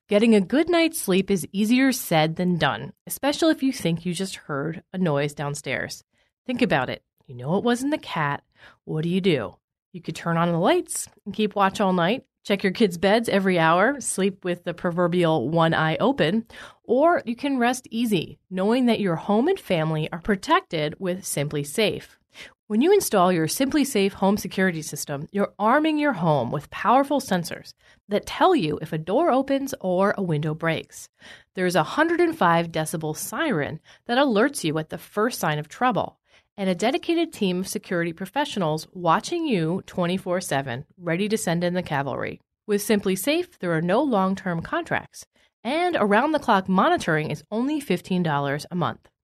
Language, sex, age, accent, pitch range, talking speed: English, female, 30-49, American, 165-235 Hz, 185 wpm